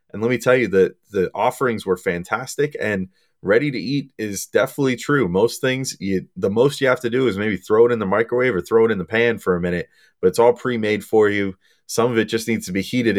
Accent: American